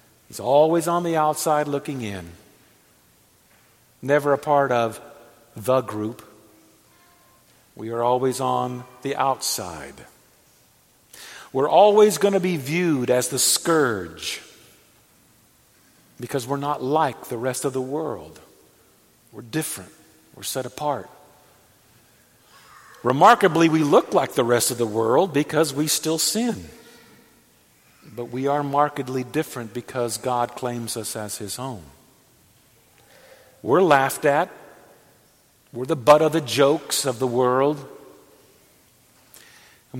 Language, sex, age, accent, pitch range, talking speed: English, male, 50-69, American, 115-150 Hz, 120 wpm